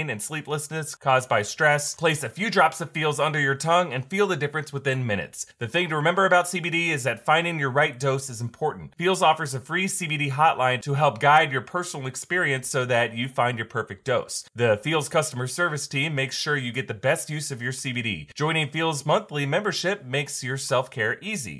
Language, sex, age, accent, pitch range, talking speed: English, male, 30-49, American, 135-180 Hz, 210 wpm